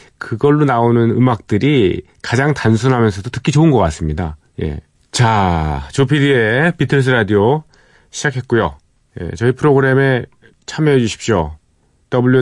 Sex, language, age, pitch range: male, Korean, 40-59, 100-135 Hz